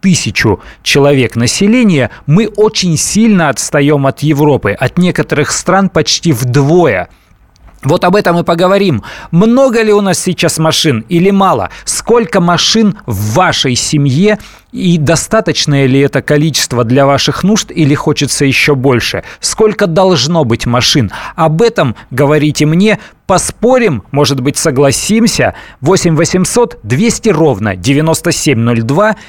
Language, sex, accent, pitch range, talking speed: Russian, male, native, 130-180 Hz, 125 wpm